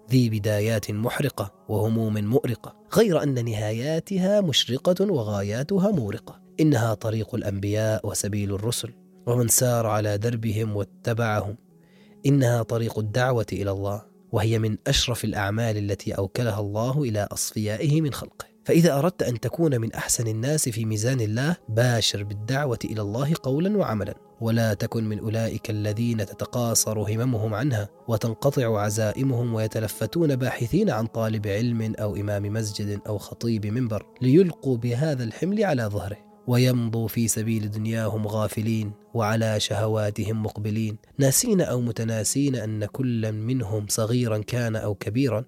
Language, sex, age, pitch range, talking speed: Arabic, male, 20-39, 110-135 Hz, 130 wpm